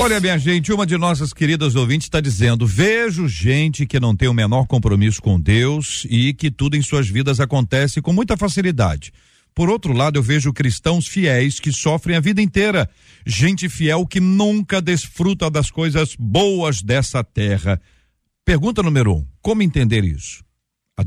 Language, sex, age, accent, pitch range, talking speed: Portuguese, male, 50-69, Brazilian, 115-150 Hz, 170 wpm